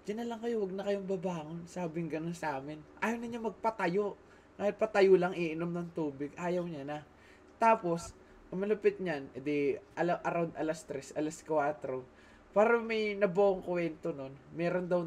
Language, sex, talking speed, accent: Filipino, male, 160 wpm, native